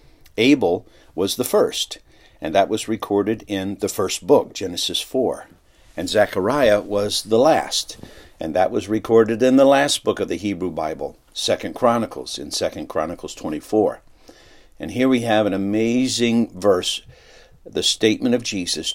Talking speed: 150 wpm